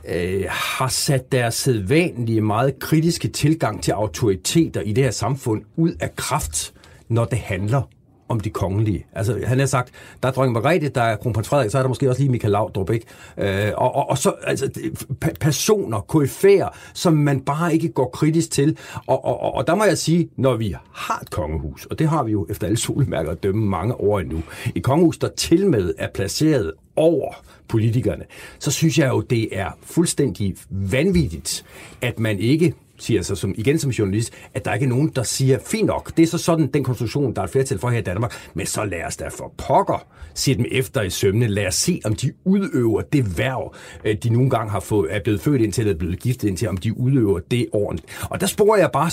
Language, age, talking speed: Danish, 60-79, 215 wpm